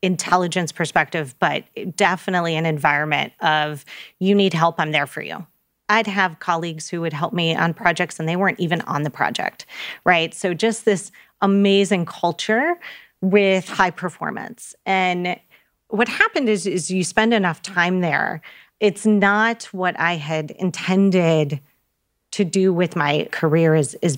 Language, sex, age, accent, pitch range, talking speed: English, female, 30-49, American, 160-195 Hz, 150 wpm